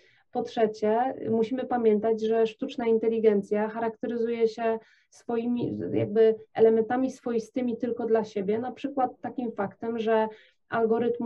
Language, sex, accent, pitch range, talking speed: Polish, female, native, 205-235 Hz, 110 wpm